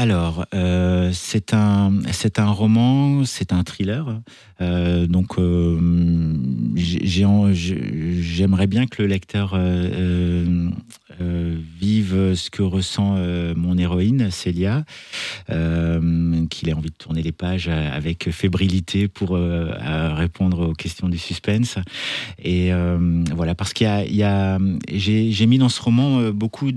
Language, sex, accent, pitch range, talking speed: French, male, French, 90-105 Hz, 125 wpm